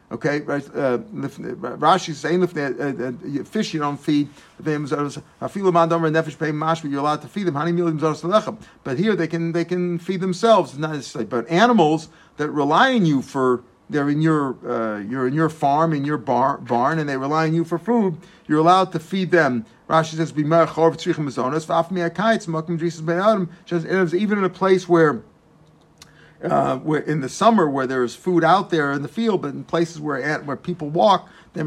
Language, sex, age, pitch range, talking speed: English, male, 50-69, 145-180 Hz, 155 wpm